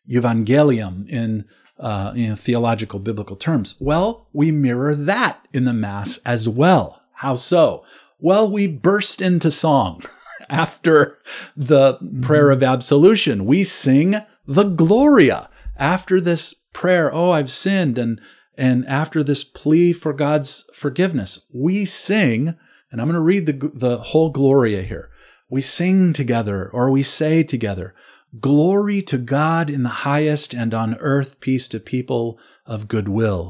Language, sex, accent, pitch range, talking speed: English, male, American, 120-160 Hz, 140 wpm